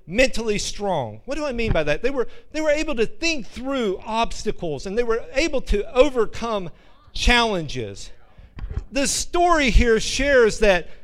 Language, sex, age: English, male, 50-69